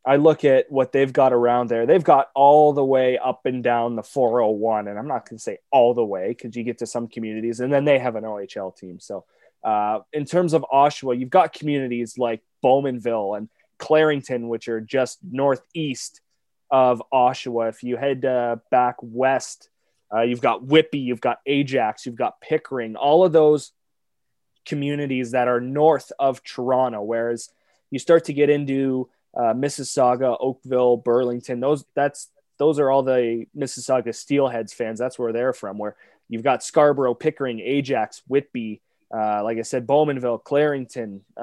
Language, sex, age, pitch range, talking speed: English, male, 20-39, 120-140 Hz, 175 wpm